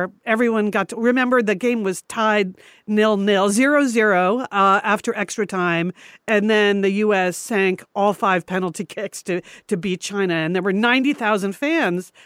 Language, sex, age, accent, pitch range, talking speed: English, female, 50-69, American, 195-245 Hz, 155 wpm